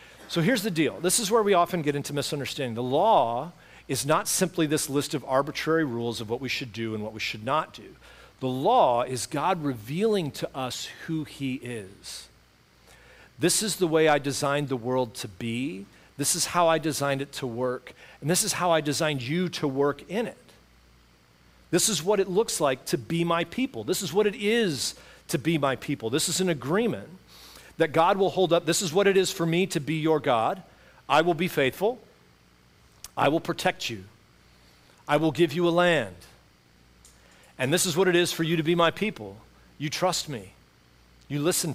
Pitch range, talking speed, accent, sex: 115-170 Hz, 205 wpm, American, male